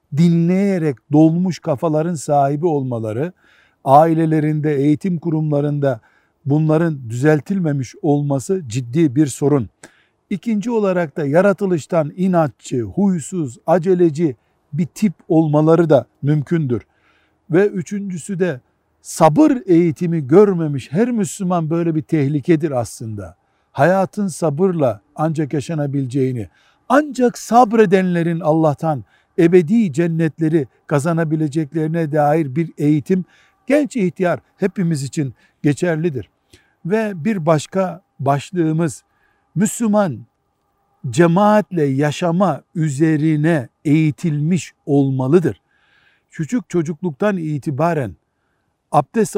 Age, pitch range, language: 60-79, 145-180 Hz, Turkish